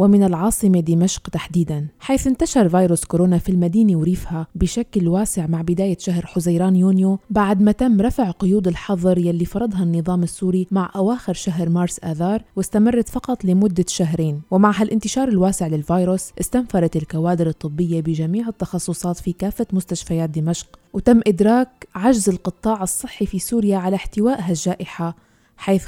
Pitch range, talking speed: 170-200 Hz, 140 wpm